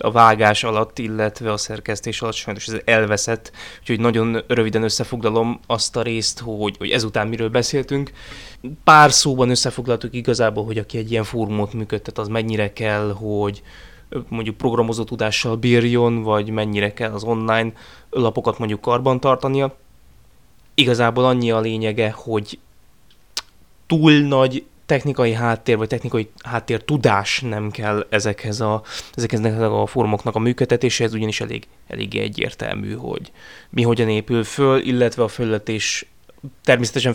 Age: 20-39